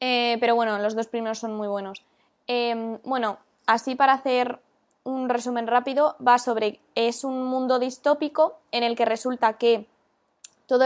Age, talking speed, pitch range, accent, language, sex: 20-39, 160 wpm, 225-260 Hz, Spanish, Spanish, female